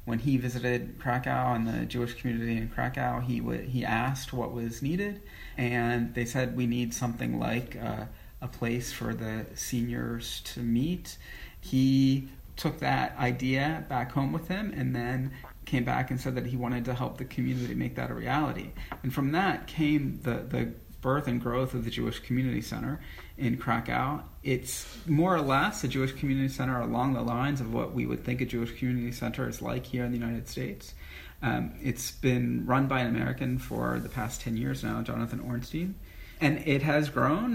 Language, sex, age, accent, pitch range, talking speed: English, male, 30-49, American, 115-135 Hz, 190 wpm